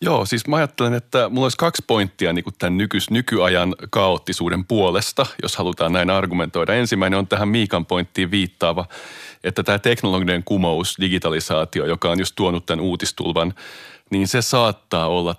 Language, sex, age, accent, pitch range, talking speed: Finnish, male, 30-49, native, 85-100 Hz, 155 wpm